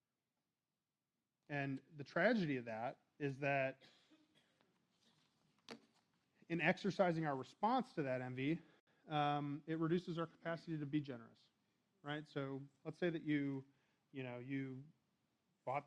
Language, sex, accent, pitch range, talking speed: English, male, American, 125-150 Hz, 120 wpm